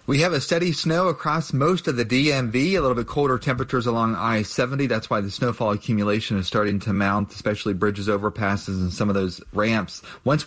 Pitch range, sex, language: 105-130 Hz, male, English